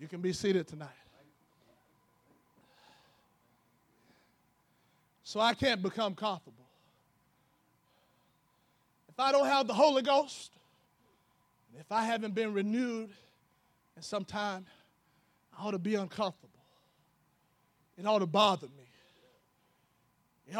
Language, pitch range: English, 165-245 Hz